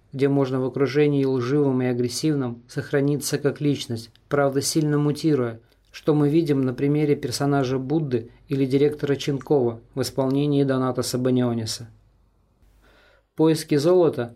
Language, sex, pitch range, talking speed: Russian, male, 125-145 Hz, 120 wpm